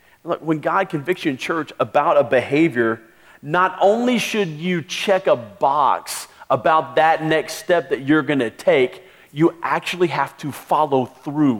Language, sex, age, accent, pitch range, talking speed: English, male, 40-59, American, 130-200 Hz, 165 wpm